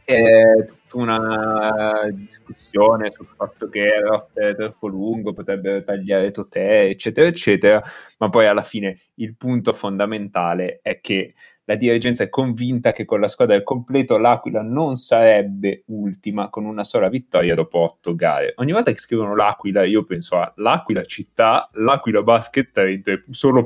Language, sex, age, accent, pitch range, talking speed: Italian, male, 20-39, native, 105-125 Hz, 150 wpm